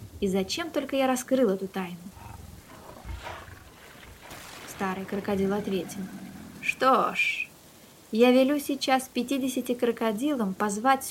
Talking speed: 95 wpm